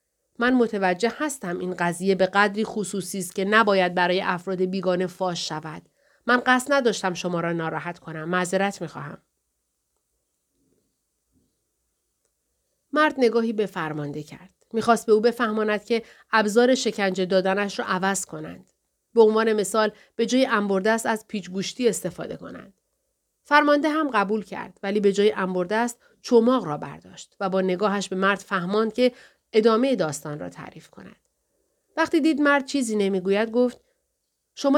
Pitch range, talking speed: 185-245 Hz, 140 wpm